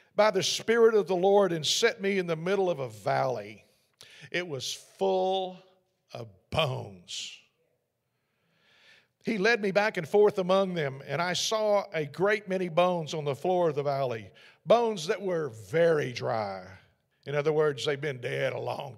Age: 50-69